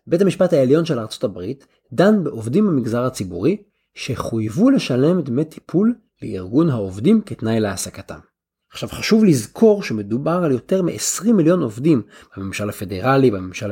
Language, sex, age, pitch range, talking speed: Hebrew, male, 30-49, 110-165 Hz, 130 wpm